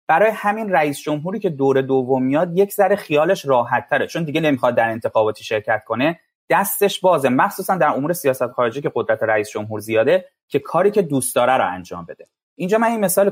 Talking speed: 200 wpm